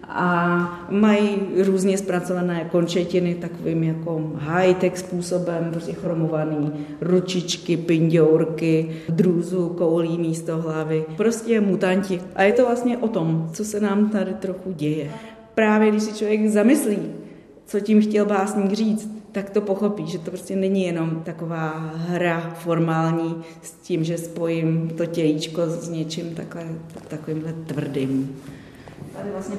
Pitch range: 165-195 Hz